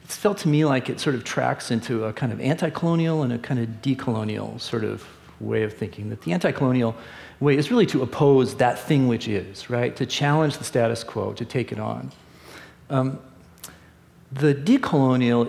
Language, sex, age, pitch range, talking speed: English, male, 40-59, 115-150 Hz, 190 wpm